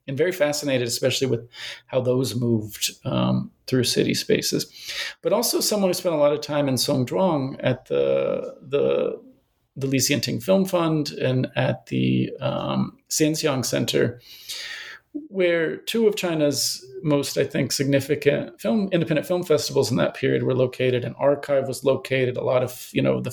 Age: 40-59